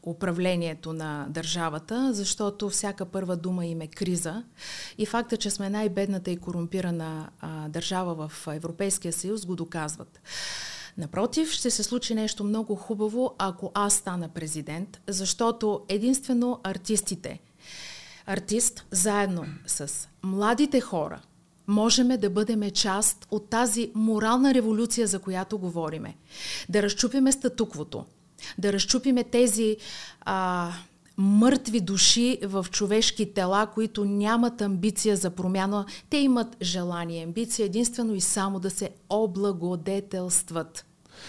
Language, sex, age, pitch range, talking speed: Bulgarian, female, 30-49, 175-220 Hz, 115 wpm